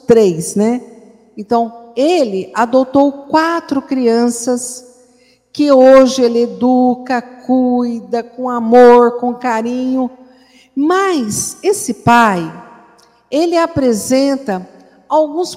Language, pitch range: Portuguese, 235-300 Hz